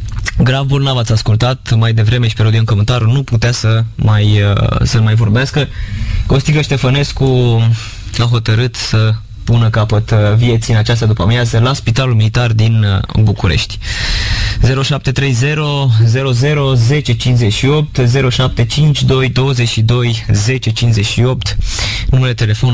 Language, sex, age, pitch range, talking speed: Romanian, male, 20-39, 110-130 Hz, 110 wpm